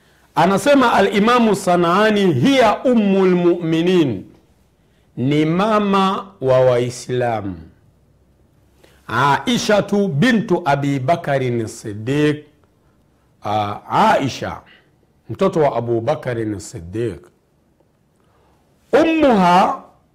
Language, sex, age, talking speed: Swahili, male, 50-69, 70 wpm